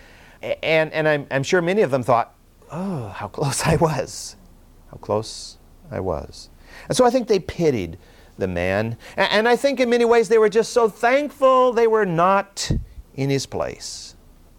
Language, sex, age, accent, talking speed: English, male, 50-69, American, 175 wpm